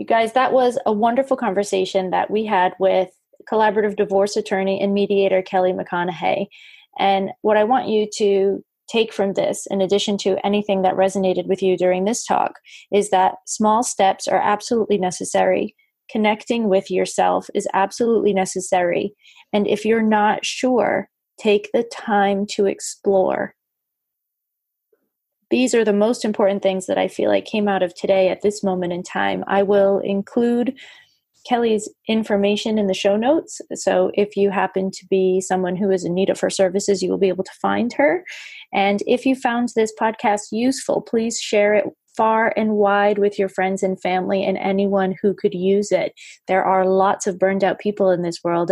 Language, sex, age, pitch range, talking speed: English, female, 30-49, 190-220 Hz, 175 wpm